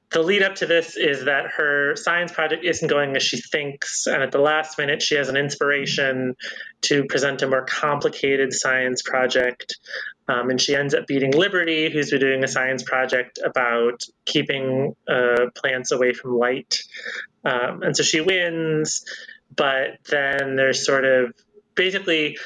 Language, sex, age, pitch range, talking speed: English, male, 30-49, 130-165 Hz, 165 wpm